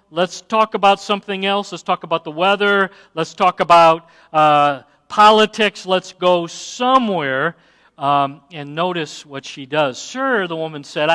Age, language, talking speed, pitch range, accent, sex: 50-69, English, 150 wpm, 160-215 Hz, American, male